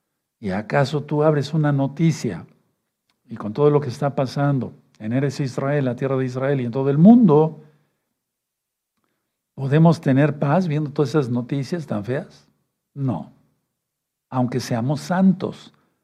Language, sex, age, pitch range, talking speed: Spanish, male, 60-79, 130-175 Hz, 140 wpm